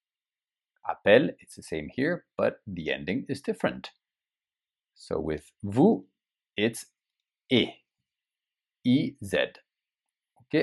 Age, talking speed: 60-79, 115 wpm